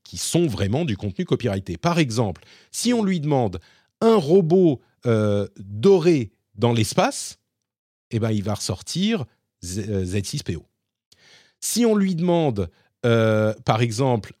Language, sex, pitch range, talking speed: French, male, 105-160 Hz, 120 wpm